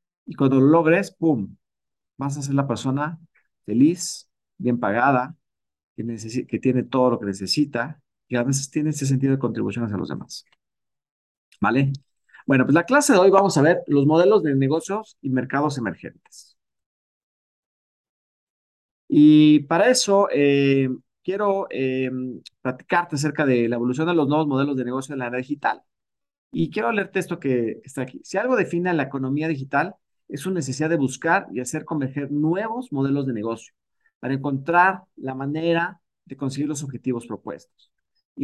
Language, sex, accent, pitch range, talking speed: Spanish, male, Mexican, 130-170 Hz, 160 wpm